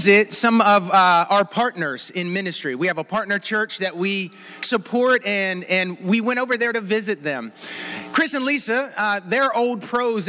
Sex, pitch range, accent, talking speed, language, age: male, 200-280 Hz, American, 180 wpm, English, 30-49